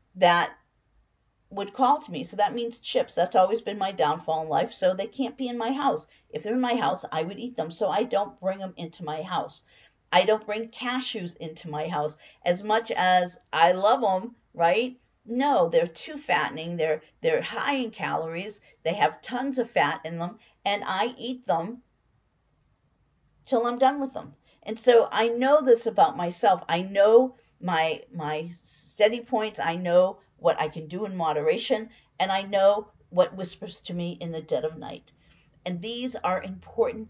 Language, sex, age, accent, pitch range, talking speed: English, female, 40-59, American, 175-240 Hz, 190 wpm